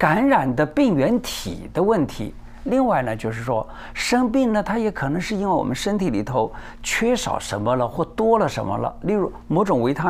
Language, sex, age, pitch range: Chinese, male, 50-69, 130-210 Hz